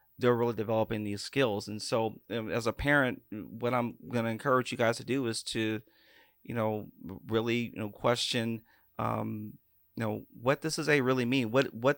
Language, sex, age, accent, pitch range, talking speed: English, male, 40-59, American, 110-125 Hz, 190 wpm